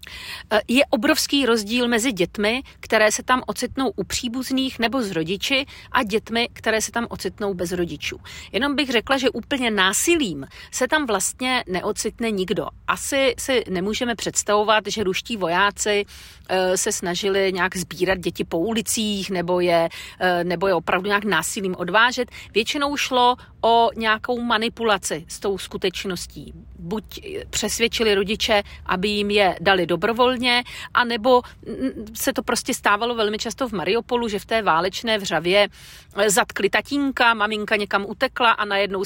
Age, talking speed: 40-59, 140 wpm